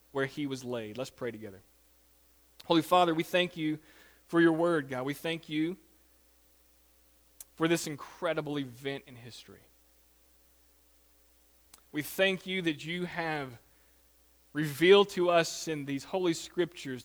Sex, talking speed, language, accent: male, 135 wpm, English, American